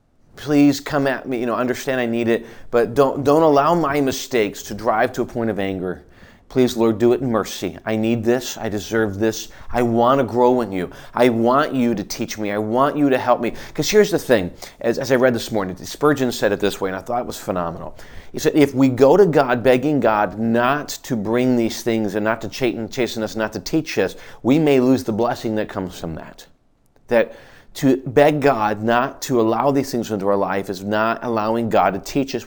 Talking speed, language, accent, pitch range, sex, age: 235 wpm, English, American, 110-130 Hz, male, 30-49